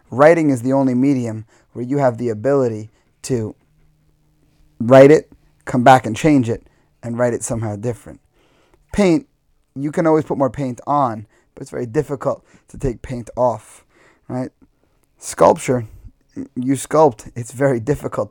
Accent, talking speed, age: American, 150 wpm, 30-49